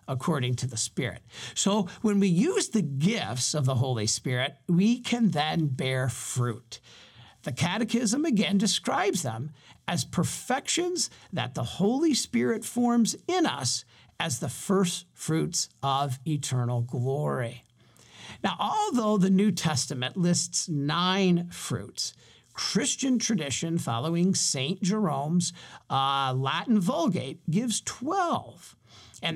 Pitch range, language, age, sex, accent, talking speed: 120-200 Hz, English, 50-69, male, American, 120 wpm